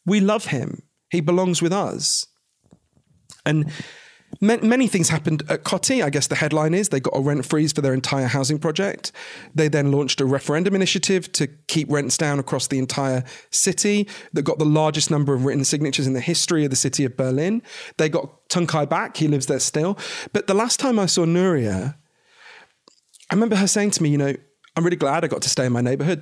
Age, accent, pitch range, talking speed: 40-59, British, 140-185 Hz, 210 wpm